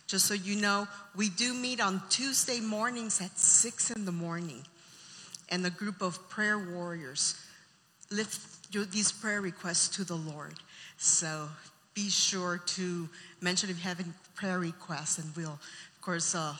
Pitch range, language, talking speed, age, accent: 175-210 Hz, English, 160 wpm, 50-69, American